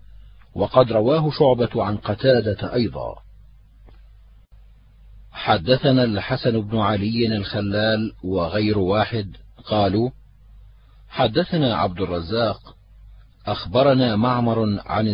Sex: male